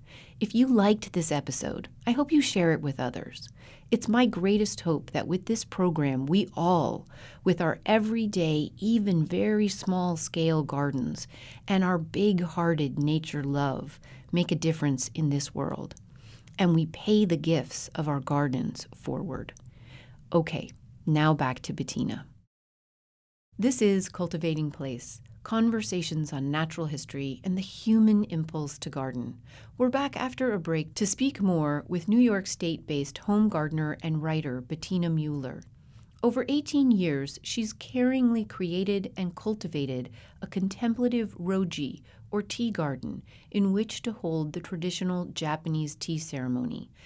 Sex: female